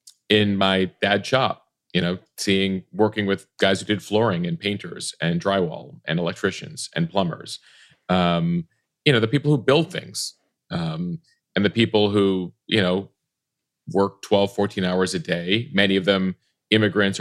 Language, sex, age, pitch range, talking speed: English, male, 30-49, 95-115 Hz, 160 wpm